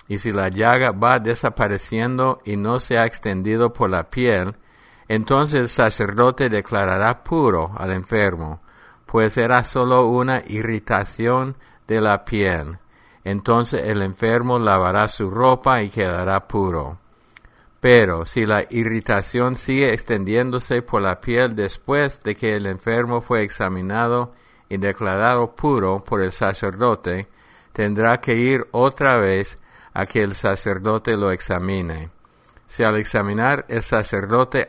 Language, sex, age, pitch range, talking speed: English, male, 50-69, 100-120 Hz, 130 wpm